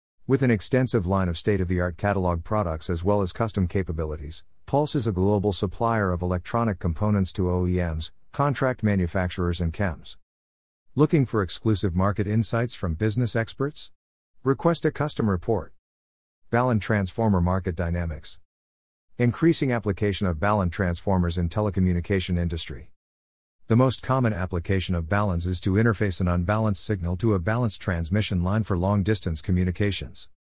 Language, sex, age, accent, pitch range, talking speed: English, male, 50-69, American, 90-115 Hz, 140 wpm